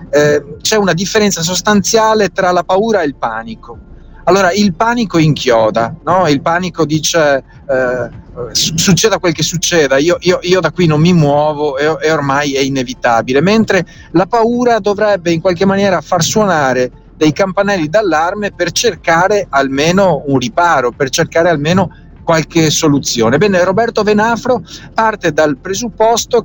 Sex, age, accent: male, 40-59, native